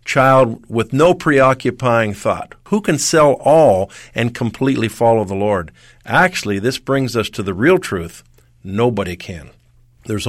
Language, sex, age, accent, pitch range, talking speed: English, male, 50-69, American, 110-140 Hz, 145 wpm